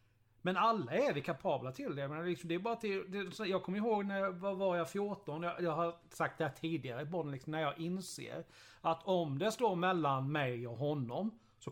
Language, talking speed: Swedish, 180 wpm